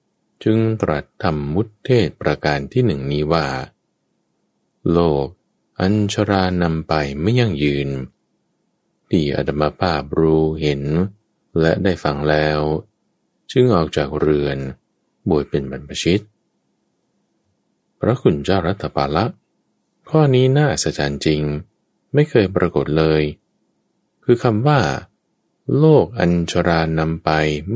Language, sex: English, male